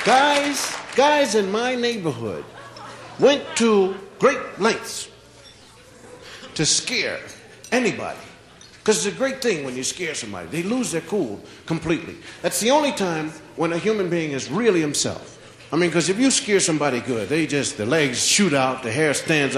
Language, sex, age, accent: English, male, 50-69, American